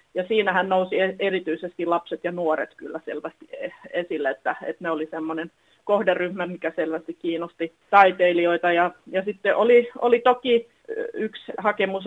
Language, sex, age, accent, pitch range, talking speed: Finnish, female, 30-49, native, 165-200 Hz, 140 wpm